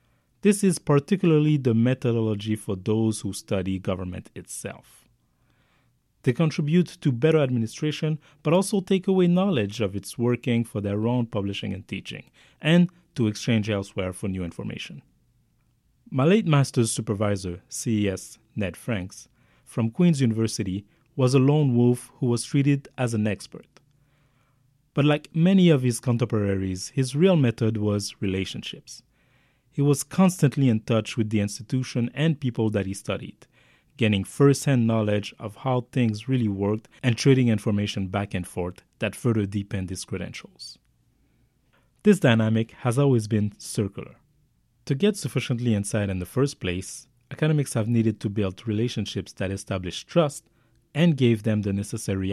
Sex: male